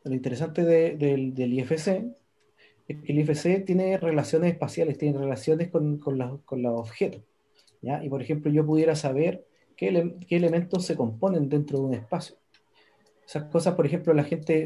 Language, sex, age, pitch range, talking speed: Spanish, male, 30-49, 130-170 Hz, 170 wpm